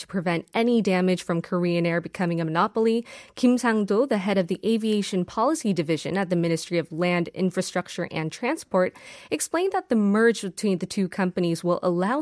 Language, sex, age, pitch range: Korean, female, 20-39, 175-225 Hz